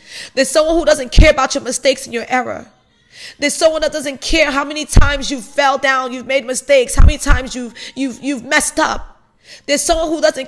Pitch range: 265-315 Hz